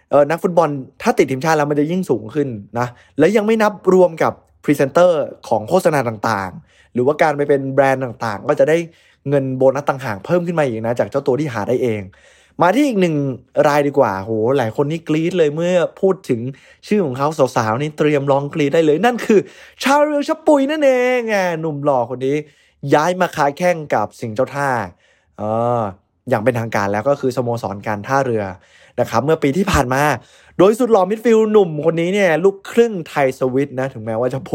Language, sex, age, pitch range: Thai, male, 20-39, 125-170 Hz